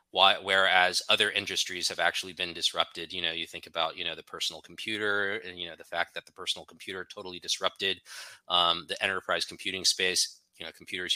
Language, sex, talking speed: English, male, 200 wpm